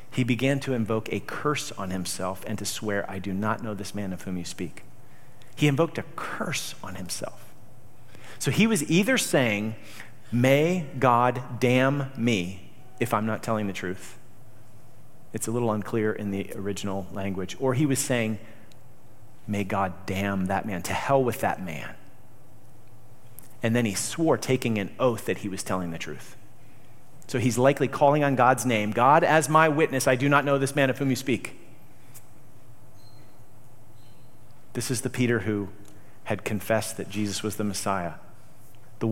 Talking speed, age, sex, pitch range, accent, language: 170 wpm, 40-59, male, 100-125 Hz, American, English